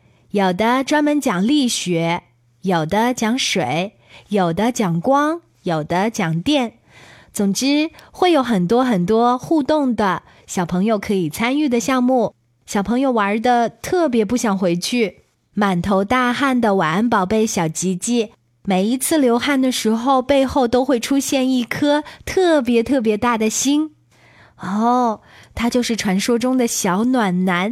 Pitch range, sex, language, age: 200-270 Hz, female, Chinese, 20-39